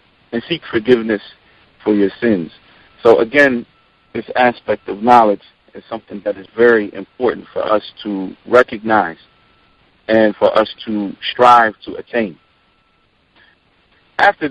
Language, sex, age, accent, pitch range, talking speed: English, male, 50-69, American, 110-130 Hz, 125 wpm